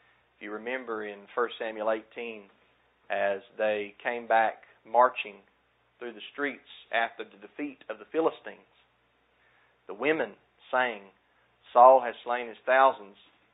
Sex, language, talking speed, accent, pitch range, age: male, English, 125 wpm, American, 100-130 Hz, 40-59